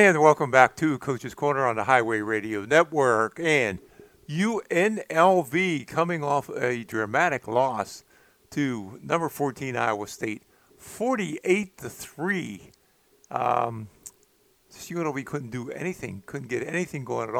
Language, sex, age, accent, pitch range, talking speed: English, male, 50-69, American, 115-145 Hz, 120 wpm